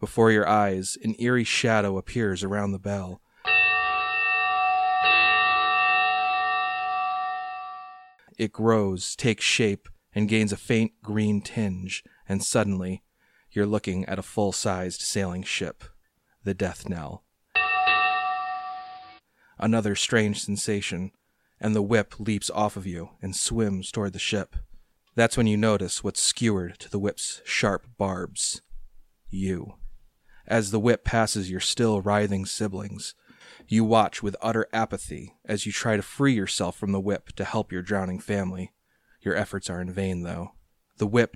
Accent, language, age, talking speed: American, English, 30-49, 135 wpm